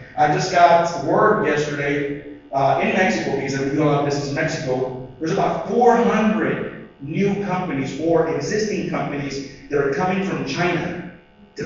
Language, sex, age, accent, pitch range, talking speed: English, male, 40-59, American, 140-175 Hz, 145 wpm